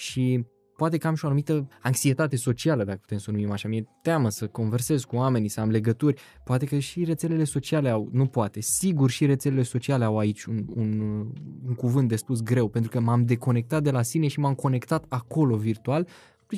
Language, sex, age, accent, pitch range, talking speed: Romanian, male, 20-39, native, 120-155 Hz, 205 wpm